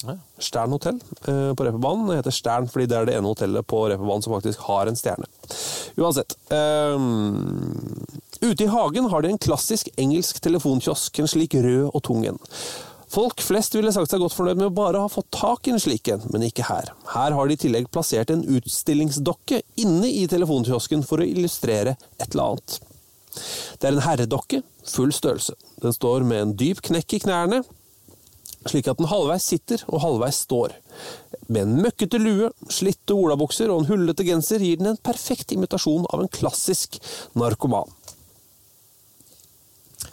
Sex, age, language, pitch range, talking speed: male, 30-49, English, 120-175 Hz, 165 wpm